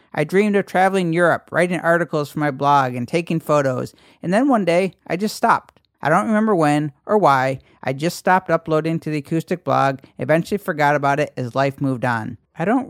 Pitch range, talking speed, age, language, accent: 135-175 Hz, 205 wpm, 40-59, English, American